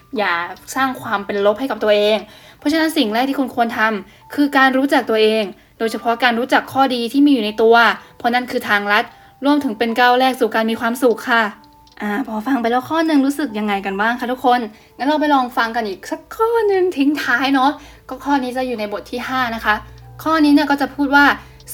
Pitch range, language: 220-270 Hz, Thai